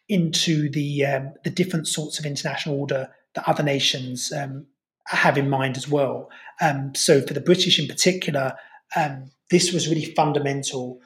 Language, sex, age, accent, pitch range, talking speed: English, male, 30-49, British, 140-170 Hz, 155 wpm